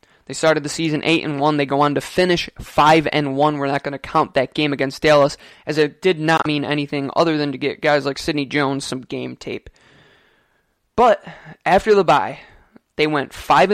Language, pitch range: English, 140-170 Hz